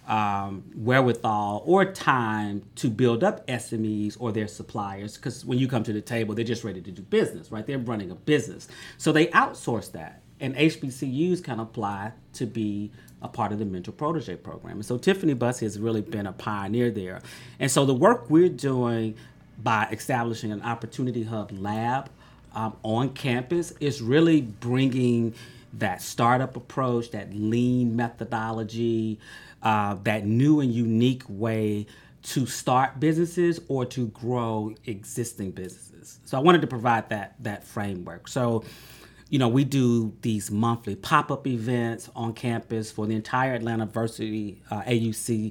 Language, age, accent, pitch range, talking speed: English, 40-59, American, 110-130 Hz, 155 wpm